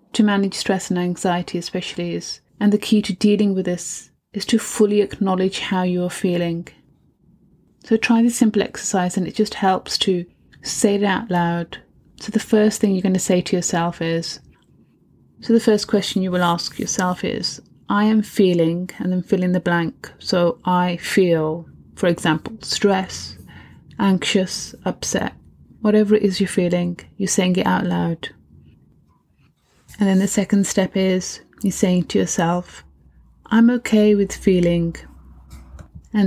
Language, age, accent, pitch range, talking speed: English, 30-49, British, 175-210 Hz, 160 wpm